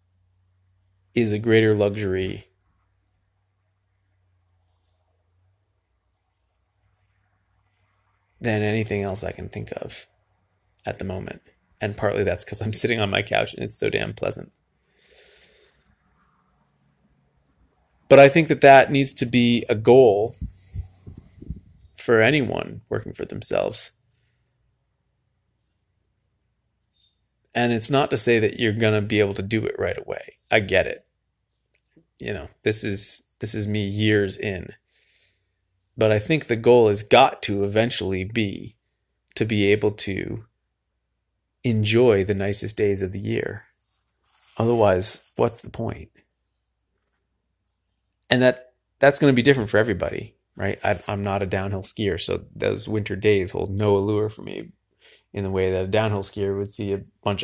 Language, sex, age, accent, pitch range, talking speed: English, male, 20-39, American, 95-110 Hz, 135 wpm